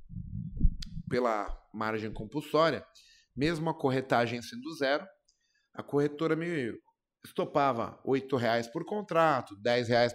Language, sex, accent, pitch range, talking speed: Portuguese, male, Brazilian, 135-180 Hz, 105 wpm